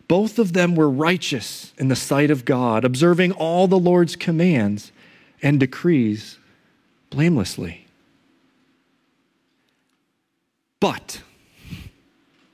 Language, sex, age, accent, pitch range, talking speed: English, male, 40-59, American, 135-175 Hz, 90 wpm